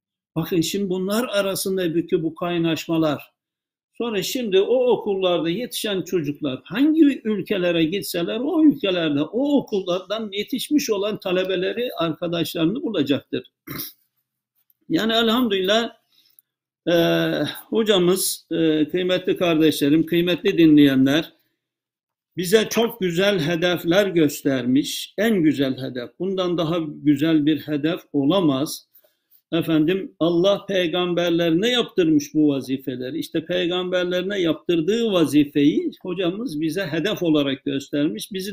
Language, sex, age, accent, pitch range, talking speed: Turkish, male, 60-79, native, 165-225 Hz, 100 wpm